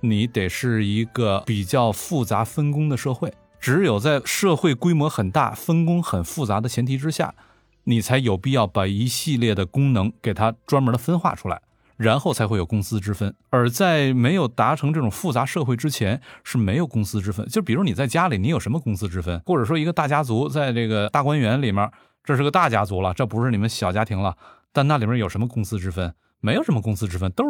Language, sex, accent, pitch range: Chinese, male, native, 110-145 Hz